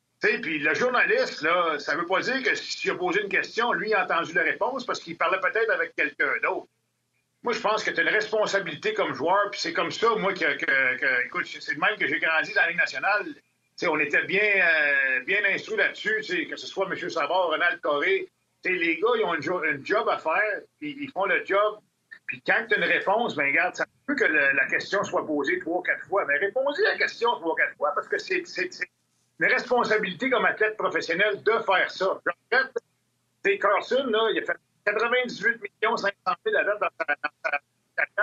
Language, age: French, 50-69